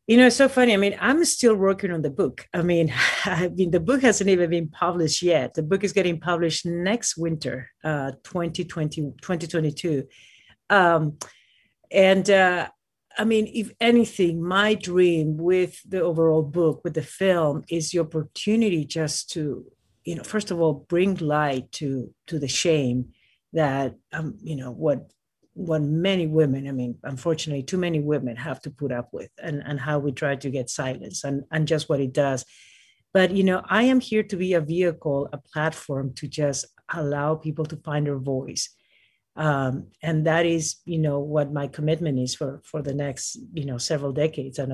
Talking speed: 185 wpm